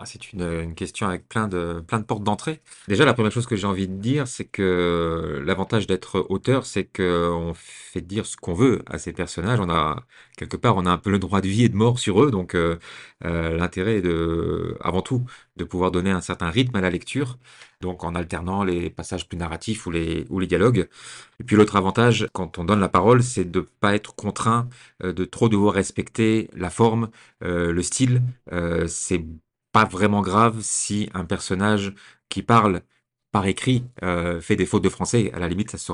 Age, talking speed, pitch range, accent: 40-59, 210 wpm, 90-110 Hz, French